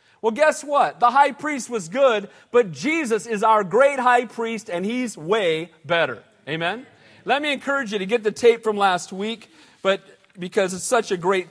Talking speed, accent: 195 wpm, American